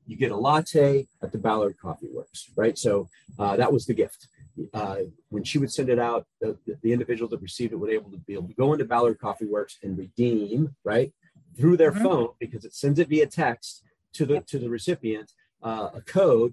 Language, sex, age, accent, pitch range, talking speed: English, male, 40-59, American, 115-145 Hz, 220 wpm